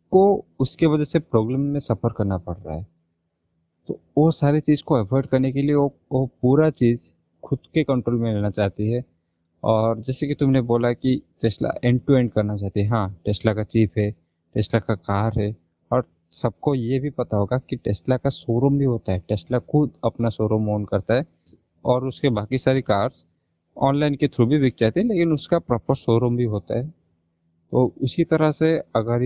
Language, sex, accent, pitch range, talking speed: Hindi, male, native, 105-140 Hz, 200 wpm